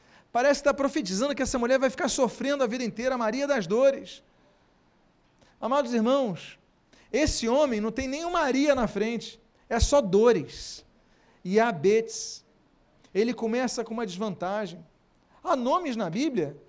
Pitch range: 195-255 Hz